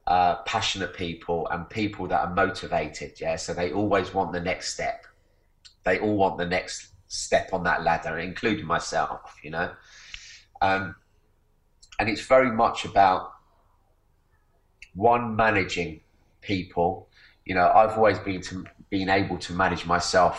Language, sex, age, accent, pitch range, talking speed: English, male, 30-49, British, 85-100 Hz, 145 wpm